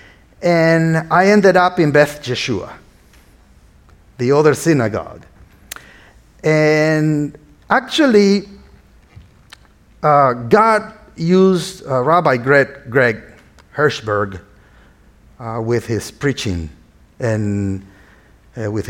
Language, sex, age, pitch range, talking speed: English, male, 50-69, 115-155 Hz, 80 wpm